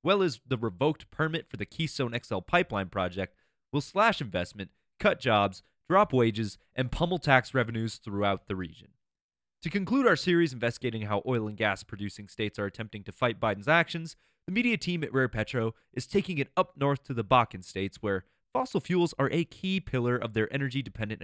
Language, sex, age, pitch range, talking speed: English, male, 20-39, 105-155 Hz, 190 wpm